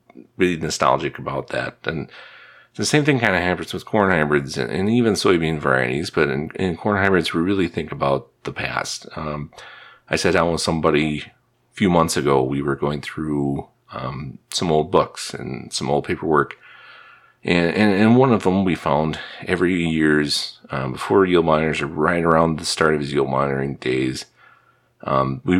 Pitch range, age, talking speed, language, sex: 75-95 Hz, 40-59, 185 wpm, English, male